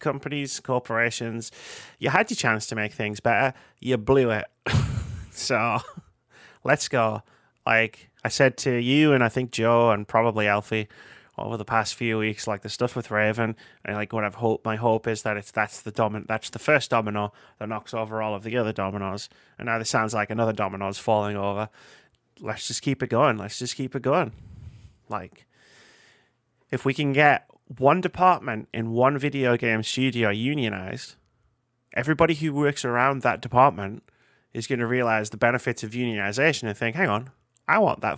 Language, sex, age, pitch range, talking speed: English, male, 30-49, 105-130 Hz, 185 wpm